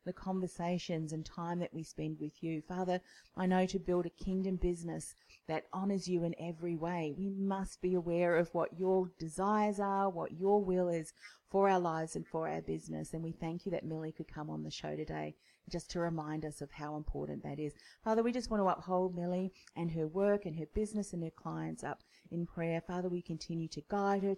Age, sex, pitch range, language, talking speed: 40-59, female, 160-195 Hz, English, 220 wpm